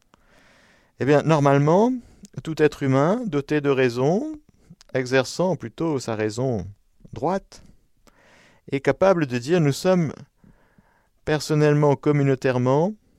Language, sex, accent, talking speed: French, male, French, 100 wpm